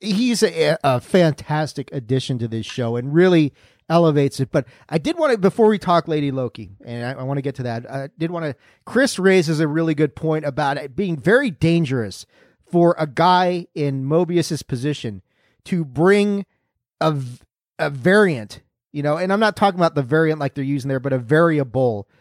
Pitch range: 140-185 Hz